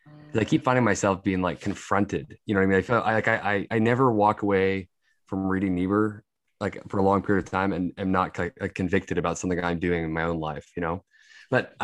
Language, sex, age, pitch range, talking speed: English, male, 20-39, 95-115 Hz, 240 wpm